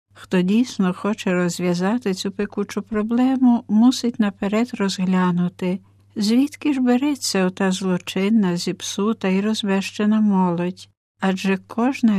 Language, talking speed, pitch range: Ukrainian, 110 wpm, 180-210 Hz